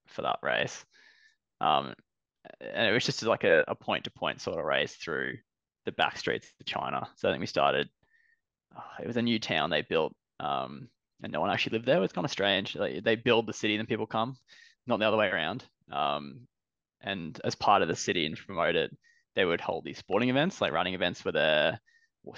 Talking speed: 225 wpm